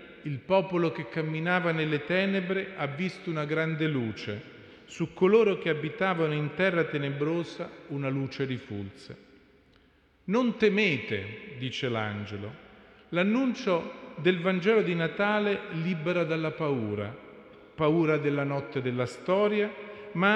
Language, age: Italian, 40-59